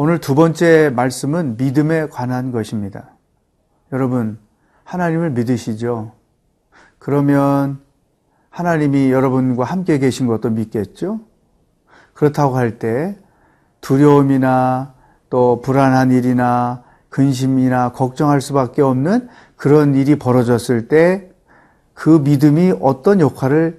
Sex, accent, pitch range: male, native, 125-165 Hz